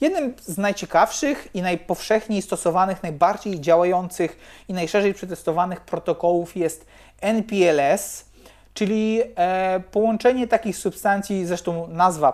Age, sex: 30-49, male